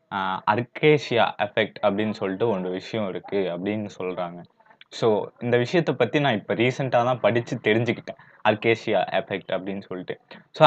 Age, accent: 20-39, native